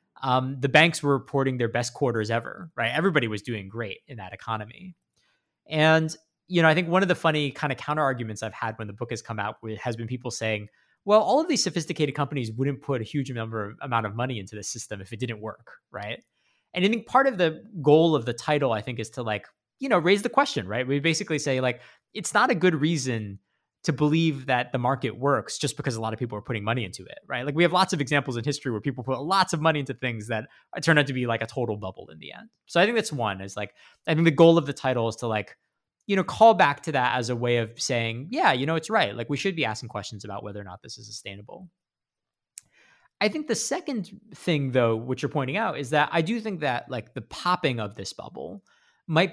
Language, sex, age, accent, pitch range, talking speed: English, male, 20-39, American, 115-160 Hz, 250 wpm